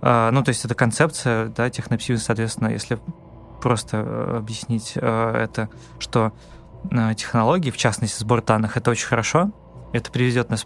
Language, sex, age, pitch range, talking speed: Russian, male, 20-39, 115-135 Hz, 150 wpm